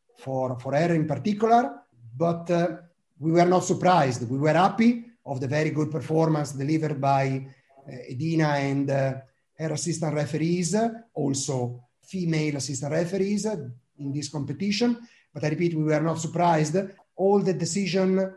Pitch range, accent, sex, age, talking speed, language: 135-165 Hz, Italian, male, 30-49, 155 wpm, English